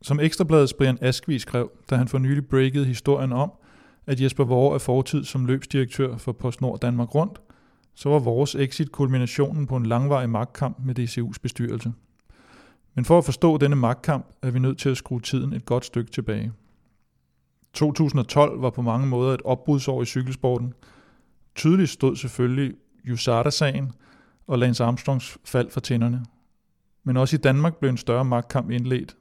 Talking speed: 165 wpm